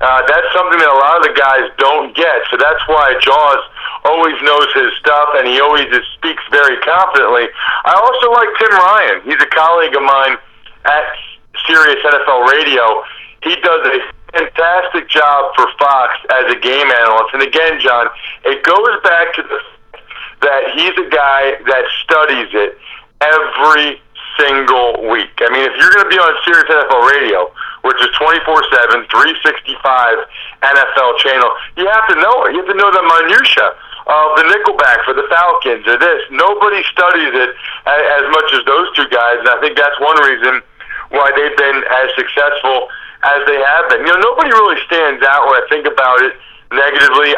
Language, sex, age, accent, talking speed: English, male, 40-59, American, 180 wpm